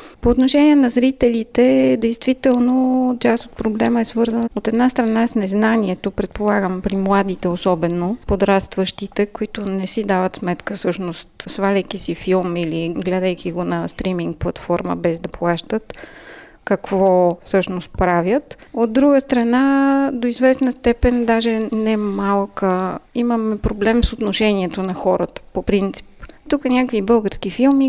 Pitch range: 190-235 Hz